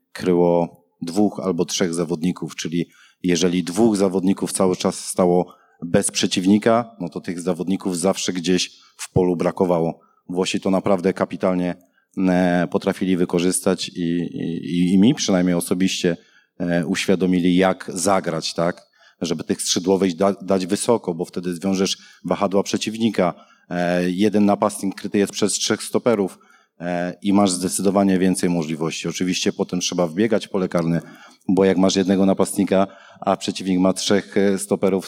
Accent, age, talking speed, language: native, 40-59, 130 wpm, Polish